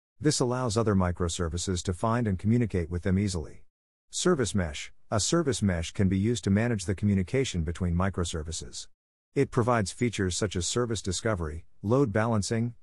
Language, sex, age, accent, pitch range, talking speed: English, male, 50-69, American, 90-115 Hz, 160 wpm